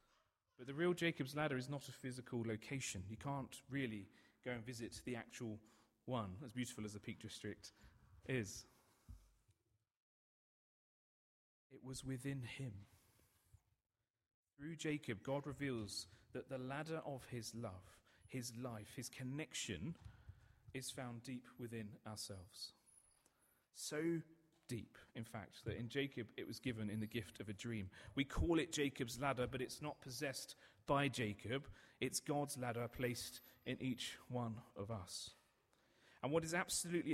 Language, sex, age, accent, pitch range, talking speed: English, male, 40-59, British, 110-140 Hz, 145 wpm